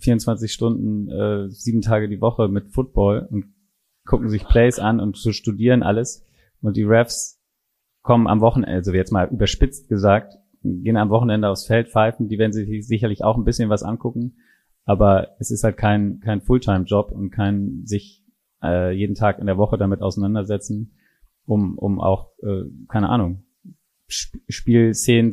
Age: 30-49